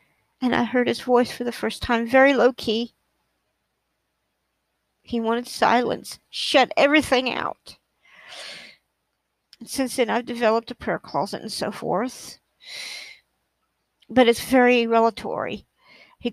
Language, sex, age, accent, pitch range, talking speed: English, female, 50-69, American, 245-295 Hz, 120 wpm